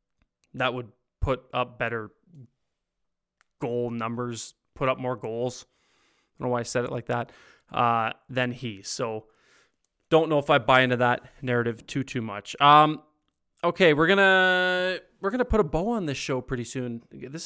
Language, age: English, 20-39